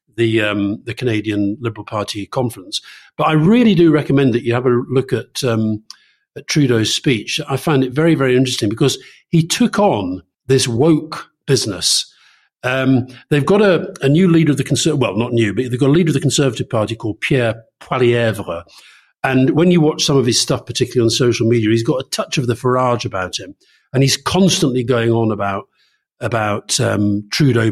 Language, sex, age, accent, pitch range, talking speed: English, male, 50-69, British, 110-140 Hz, 195 wpm